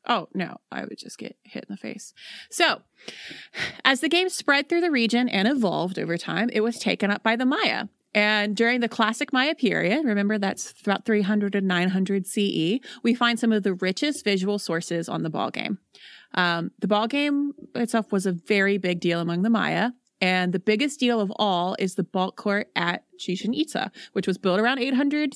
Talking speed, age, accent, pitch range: 200 wpm, 30-49, American, 185-230 Hz